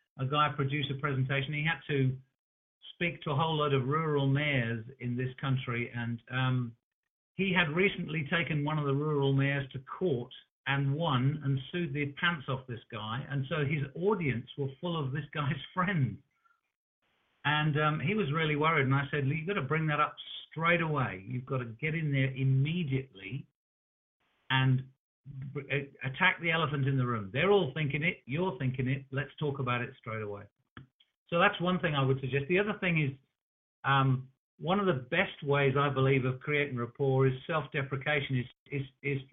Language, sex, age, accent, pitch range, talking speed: English, male, 50-69, British, 130-160 Hz, 185 wpm